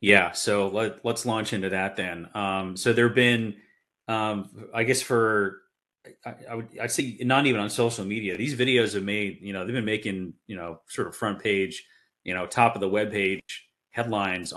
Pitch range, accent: 95-115 Hz, American